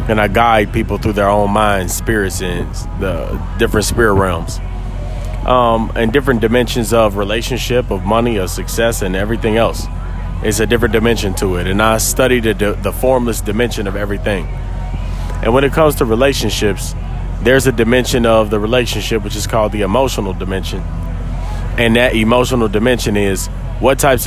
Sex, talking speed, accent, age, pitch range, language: male, 165 wpm, American, 30-49, 100-120 Hz, English